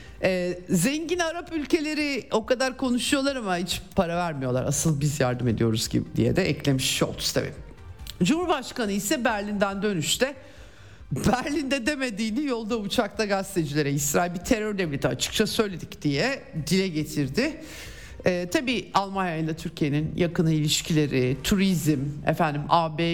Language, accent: Turkish, native